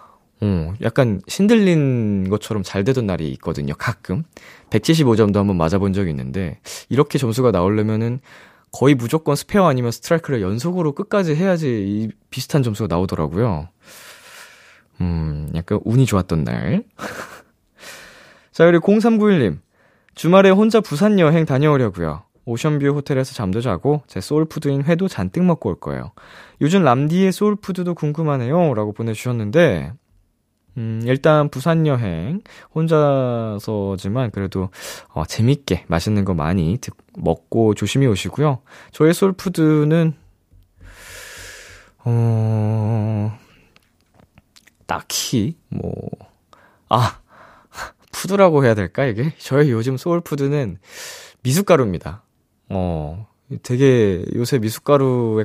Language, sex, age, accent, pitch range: Korean, male, 20-39, native, 100-155 Hz